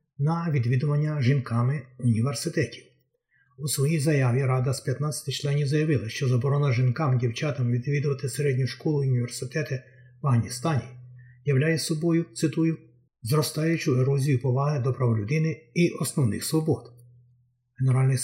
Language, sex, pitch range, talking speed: Ukrainian, male, 130-160 Hz, 120 wpm